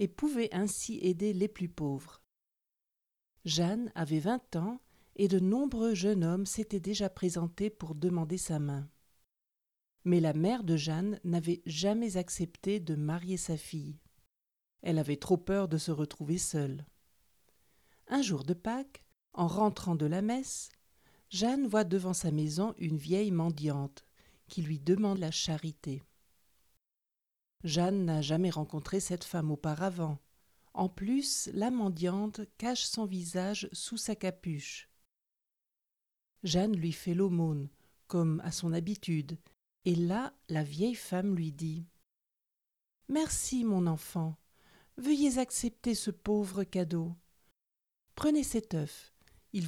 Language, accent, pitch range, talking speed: French, French, 160-210 Hz, 130 wpm